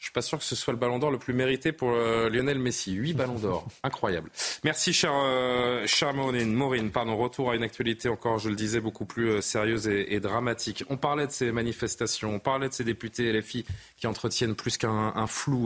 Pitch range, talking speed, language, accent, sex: 110-155 Hz, 225 wpm, French, French, male